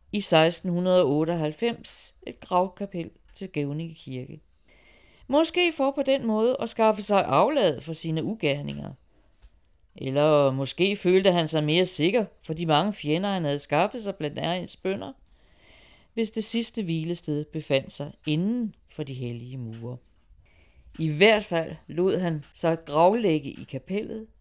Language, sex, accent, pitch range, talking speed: Danish, female, native, 140-205 Hz, 140 wpm